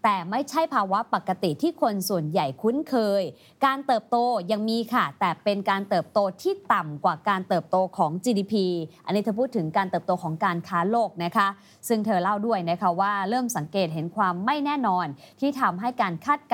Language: Thai